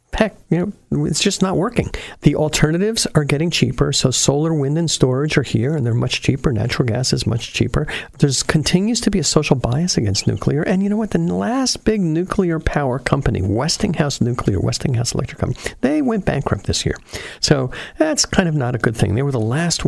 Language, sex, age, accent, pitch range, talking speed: English, male, 50-69, American, 130-190 Hz, 210 wpm